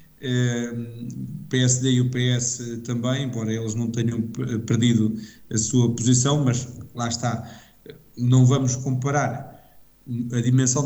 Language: Portuguese